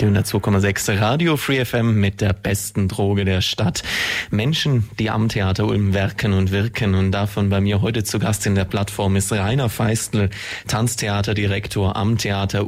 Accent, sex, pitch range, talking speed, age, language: German, male, 100-110 Hz, 170 wpm, 20-39, German